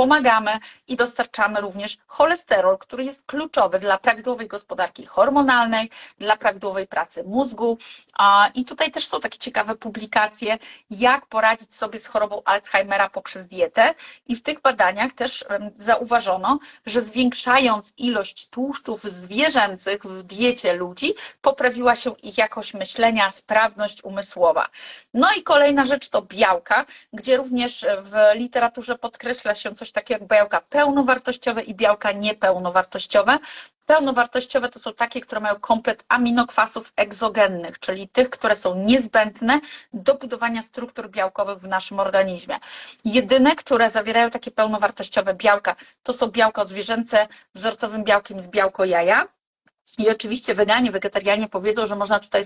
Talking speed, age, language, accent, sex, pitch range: 135 wpm, 30-49, Polish, native, female, 205-250 Hz